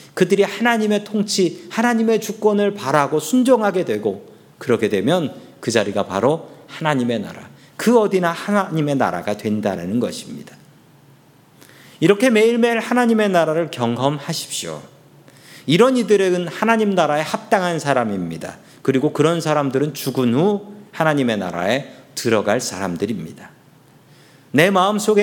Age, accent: 40-59, native